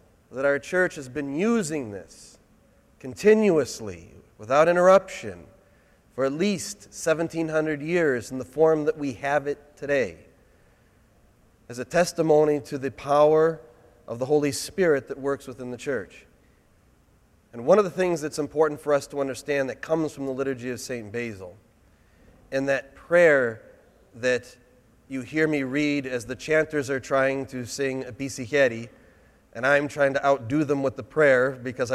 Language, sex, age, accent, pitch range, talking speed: English, male, 40-59, American, 120-150 Hz, 155 wpm